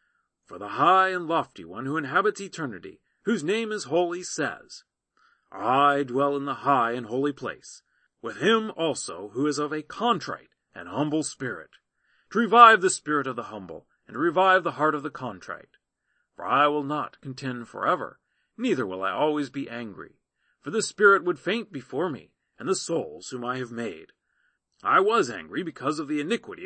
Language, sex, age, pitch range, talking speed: English, male, 40-59, 135-190 Hz, 180 wpm